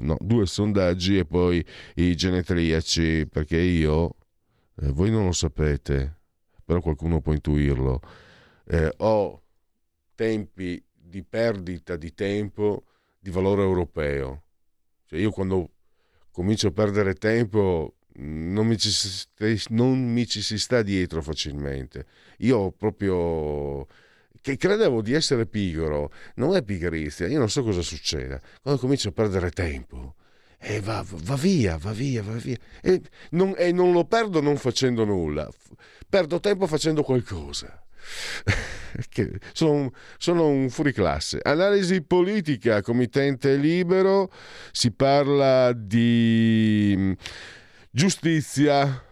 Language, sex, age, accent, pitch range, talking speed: Italian, male, 50-69, native, 90-140 Hz, 120 wpm